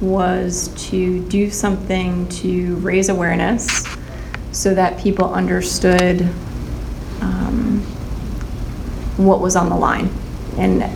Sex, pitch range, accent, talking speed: female, 175-195 Hz, American, 100 wpm